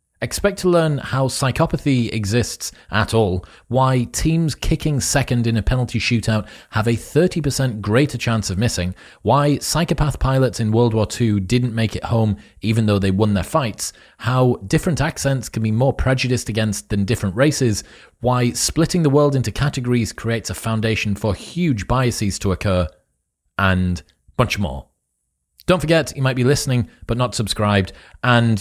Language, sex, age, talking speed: English, male, 30-49, 165 wpm